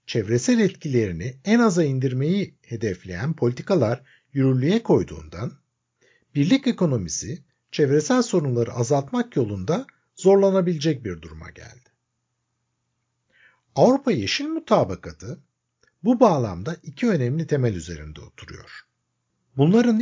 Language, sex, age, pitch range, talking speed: Turkish, male, 60-79, 115-190 Hz, 90 wpm